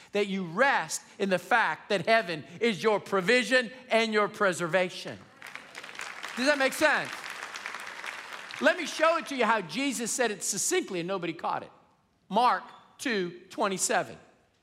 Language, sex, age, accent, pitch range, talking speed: English, male, 50-69, American, 180-255 Hz, 150 wpm